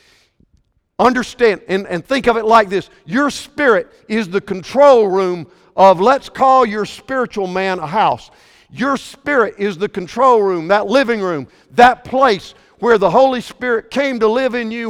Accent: American